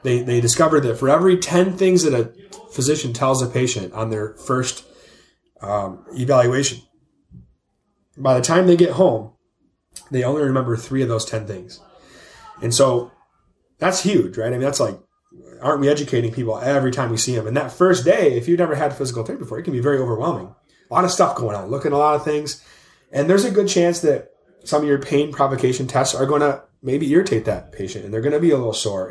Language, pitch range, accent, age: English, 115-150 Hz, American, 30-49